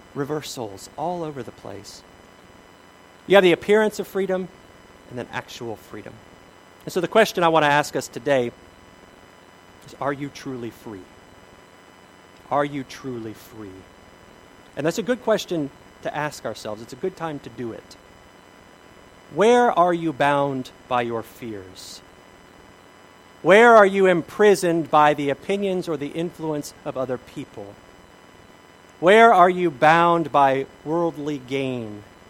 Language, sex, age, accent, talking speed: English, male, 40-59, American, 140 wpm